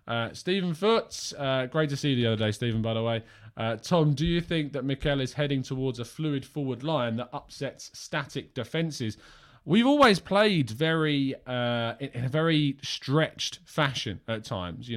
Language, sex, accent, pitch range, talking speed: English, male, British, 105-135 Hz, 185 wpm